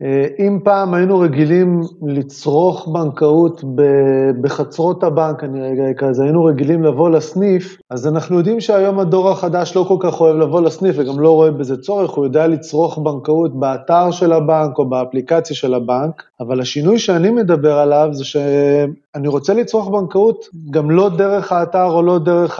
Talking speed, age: 160 wpm, 30-49